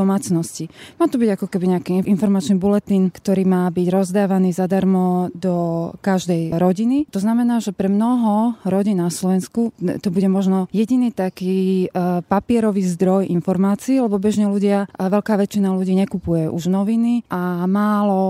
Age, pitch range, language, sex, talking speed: 20-39, 180-205 Hz, Slovak, female, 145 wpm